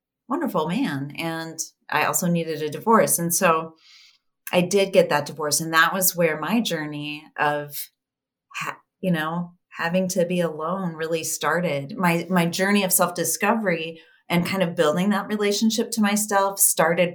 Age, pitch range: 30-49, 155-190 Hz